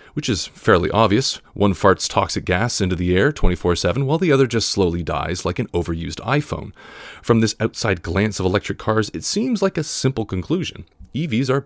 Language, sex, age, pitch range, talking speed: English, male, 30-49, 95-135 Hz, 190 wpm